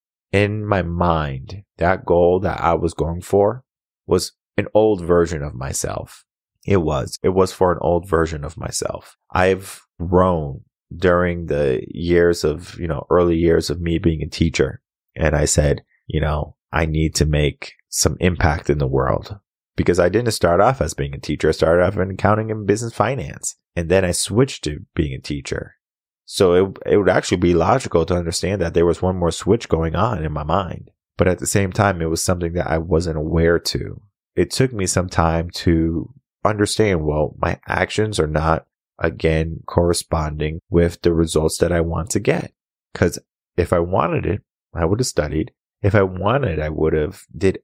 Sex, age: male, 30-49